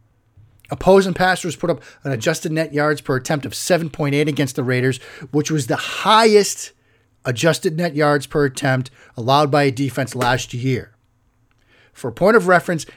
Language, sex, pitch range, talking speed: English, male, 120-165 Hz, 160 wpm